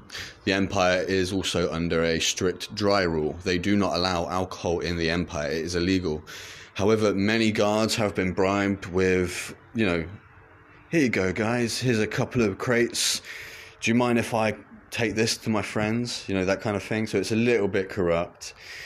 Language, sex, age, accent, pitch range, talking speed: English, male, 20-39, British, 90-110 Hz, 190 wpm